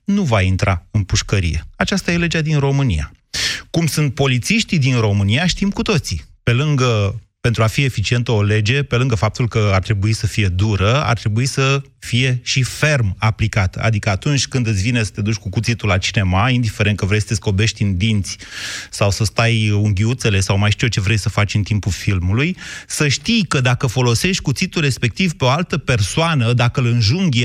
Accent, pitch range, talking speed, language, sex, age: native, 105-140 Hz, 200 wpm, Romanian, male, 30-49